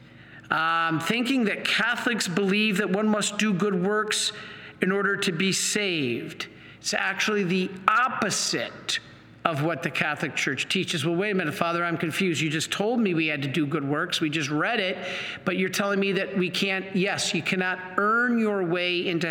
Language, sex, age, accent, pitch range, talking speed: English, male, 50-69, American, 165-205 Hz, 195 wpm